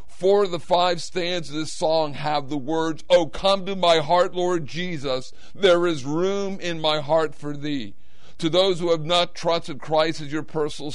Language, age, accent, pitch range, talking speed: English, 50-69, American, 145-170 Hz, 205 wpm